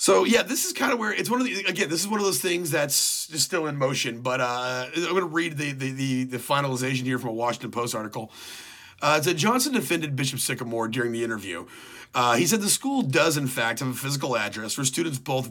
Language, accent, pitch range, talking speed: English, American, 120-155 Hz, 250 wpm